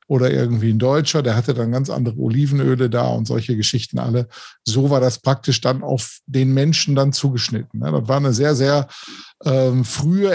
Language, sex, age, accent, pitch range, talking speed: German, male, 50-69, German, 120-145 Hz, 185 wpm